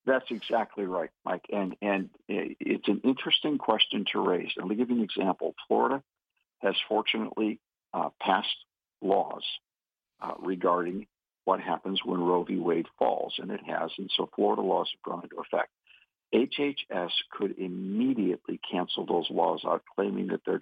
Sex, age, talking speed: male, 50-69, 155 wpm